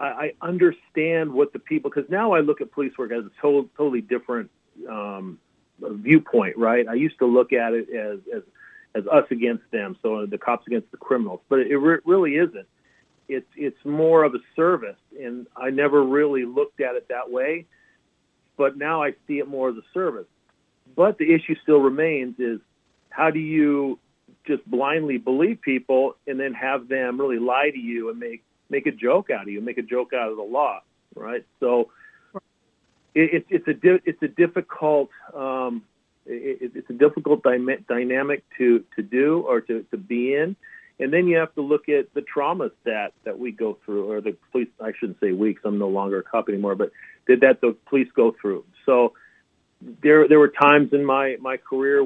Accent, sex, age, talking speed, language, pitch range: American, male, 40-59, 190 wpm, English, 120-160 Hz